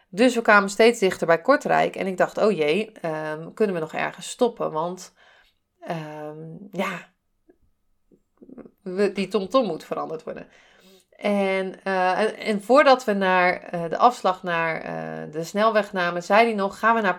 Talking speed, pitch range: 170 wpm, 175-225 Hz